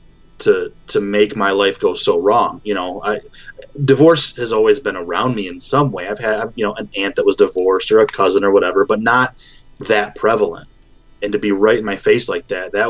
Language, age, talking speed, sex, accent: English, 20-39, 225 wpm, male, American